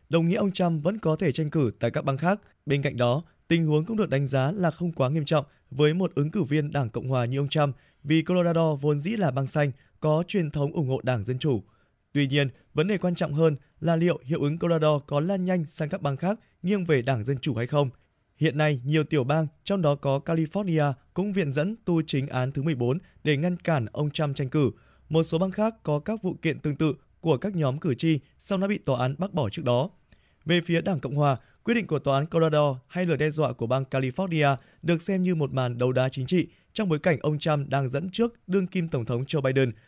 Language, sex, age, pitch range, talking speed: Vietnamese, male, 20-39, 140-175 Hz, 255 wpm